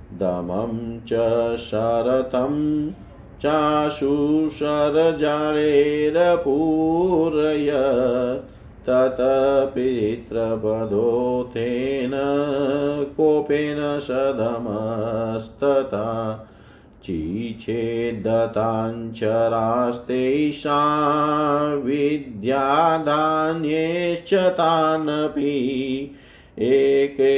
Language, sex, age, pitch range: Hindi, male, 40-59, 115-150 Hz